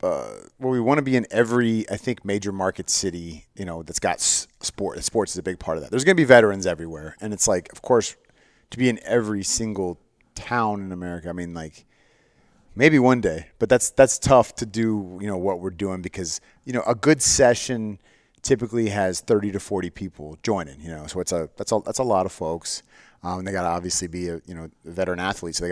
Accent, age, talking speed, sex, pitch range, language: American, 30-49, 235 wpm, male, 90-110 Hz, English